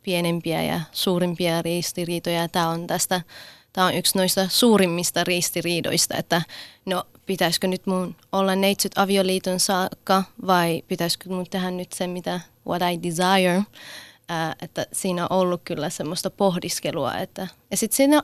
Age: 20-39